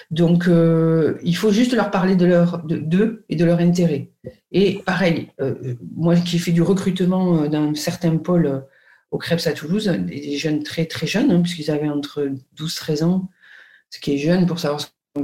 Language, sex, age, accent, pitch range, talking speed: French, female, 50-69, French, 155-185 Hz, 210 wpm